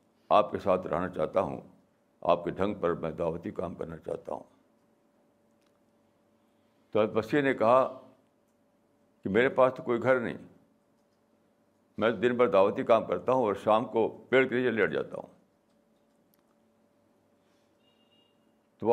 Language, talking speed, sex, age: Urdu, 140 wpm, male, 60-79